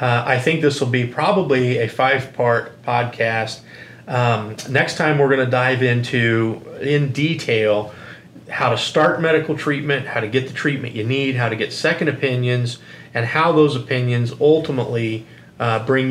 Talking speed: 165 wpm